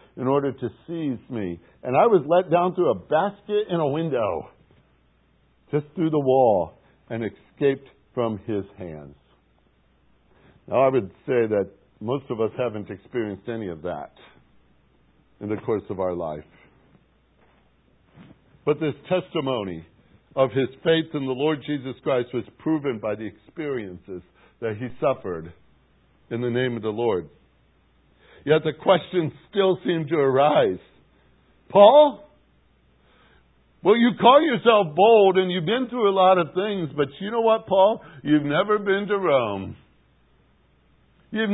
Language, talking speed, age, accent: English, 145 wpm, 60-79, American